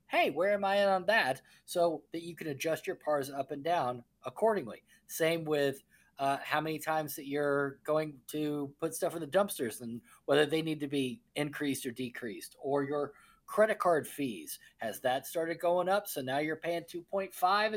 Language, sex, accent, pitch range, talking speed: English, male, American, 150-200 Hz, 195 wpm